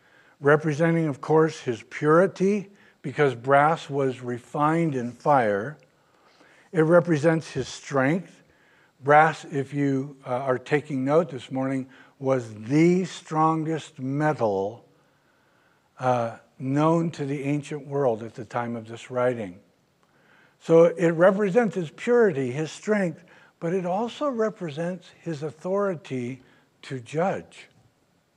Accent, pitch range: American, 140-180 Hz